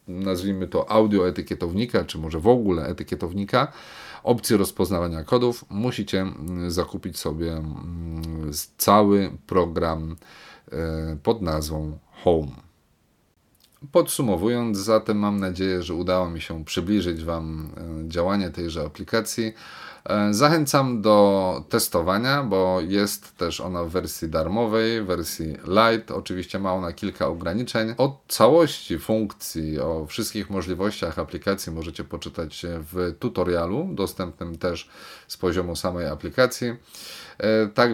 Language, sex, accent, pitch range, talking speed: Polish, male, native, 85-110 Hz, 110 wpm